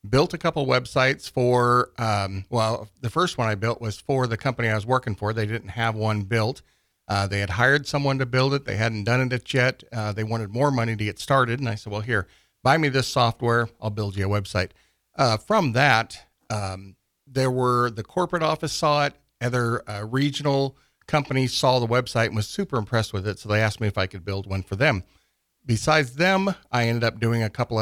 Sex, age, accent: male, 50-69, American